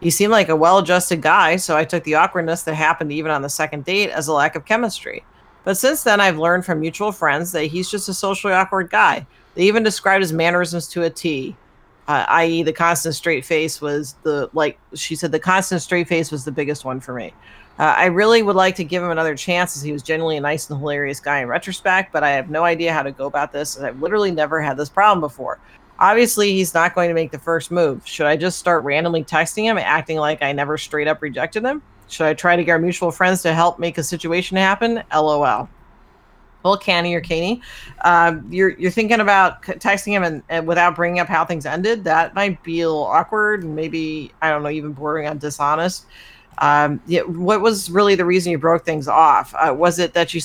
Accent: American